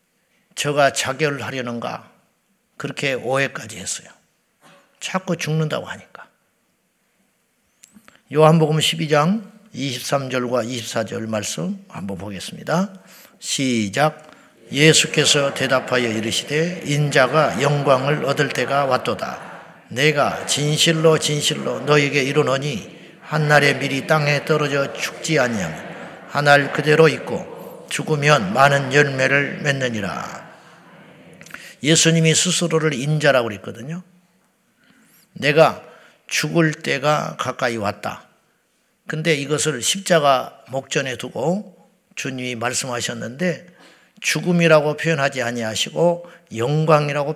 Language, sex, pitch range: Korean, male, 135-165 Hz